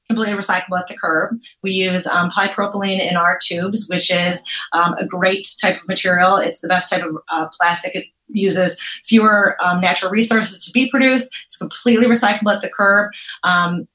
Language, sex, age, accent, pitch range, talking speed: English, female, 30-49, American, 180-220 Hz, 185 wpm